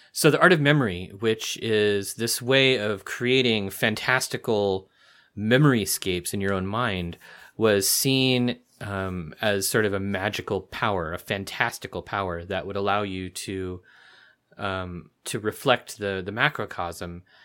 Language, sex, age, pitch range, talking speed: English, male, 30-49, 95-125 Hz, 140 wpm